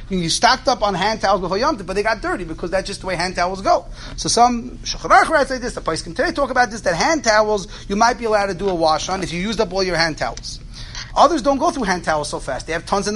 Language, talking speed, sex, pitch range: English, 285 wpm, male, 165-230 Hz